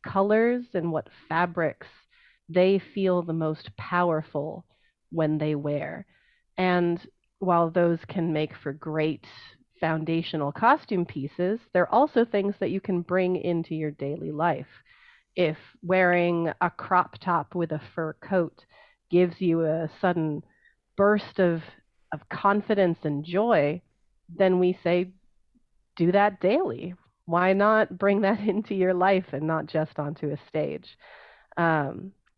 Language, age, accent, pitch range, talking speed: English, 30-49, American, 160-195 Hz, 135 wpm